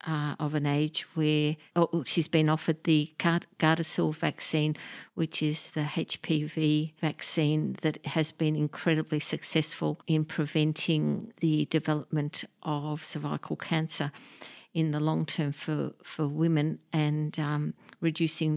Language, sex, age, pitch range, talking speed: English, female, 50-69, 150-165 Hz, 125 wpm